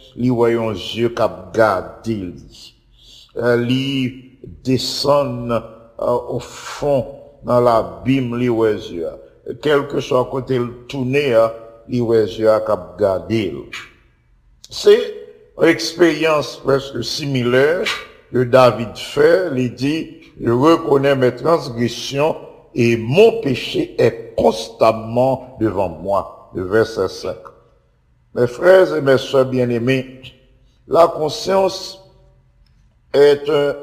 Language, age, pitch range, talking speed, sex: English, 60-79, 120-155 Hz, 105 wpm, male